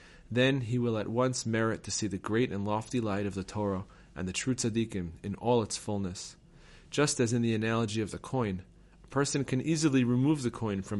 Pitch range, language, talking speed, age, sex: 100-130 Hz, English, 220 wpm, 30-49, male